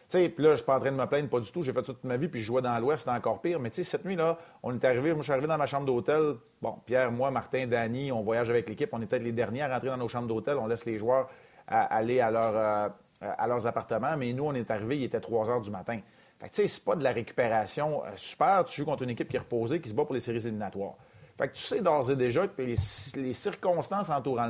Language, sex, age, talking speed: French, male, 40-59, 295 wpm